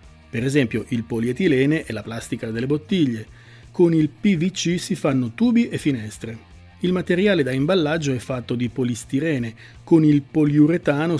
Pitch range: 120-165 Hz